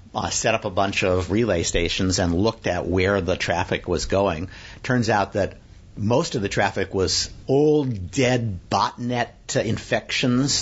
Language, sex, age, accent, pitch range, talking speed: English, male, 50-69, American, 90-115 Hz, 165 wpm